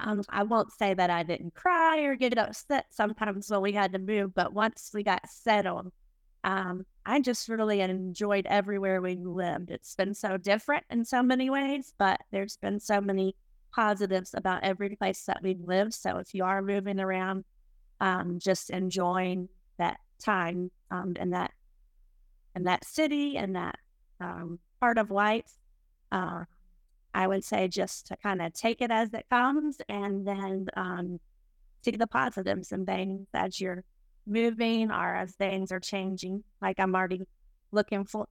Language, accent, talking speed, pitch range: English, American, 170 wpm, 185-215 Hz